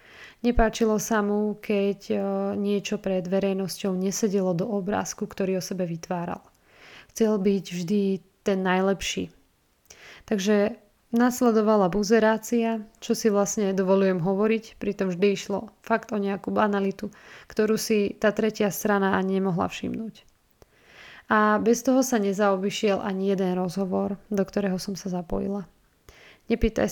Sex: female